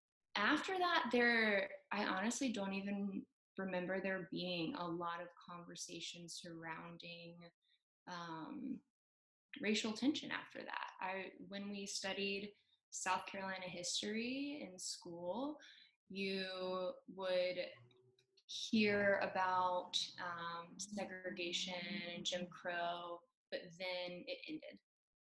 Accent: American